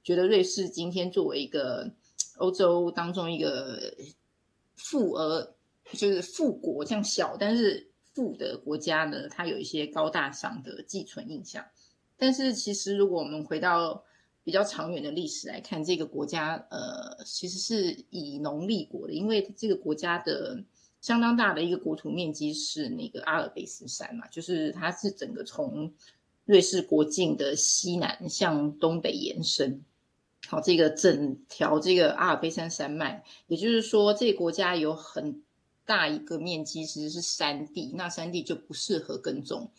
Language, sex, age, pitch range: Chinese, female, 30-49, 165-235 Hz